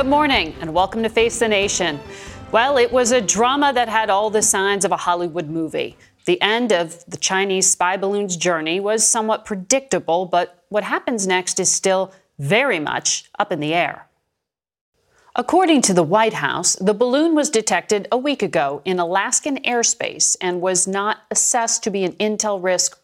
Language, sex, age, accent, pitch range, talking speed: English, female, 40-59, American, 180-240 Hz, 180 wpm